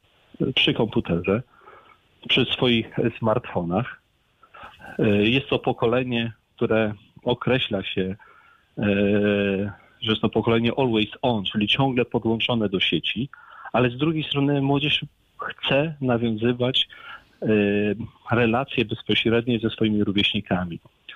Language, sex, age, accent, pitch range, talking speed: Polish, male, 40-59, native, 110-145 Hz, 95 wpm